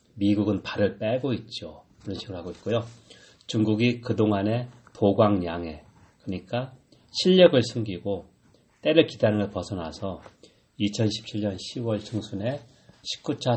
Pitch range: 95-115 Hz